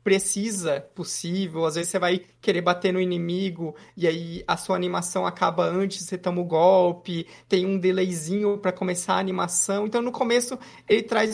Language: Portuguese